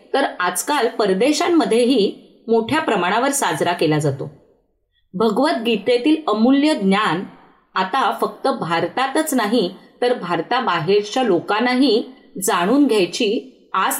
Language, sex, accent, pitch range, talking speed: Marathi, female, native, 195-285 Hz, 90 wpm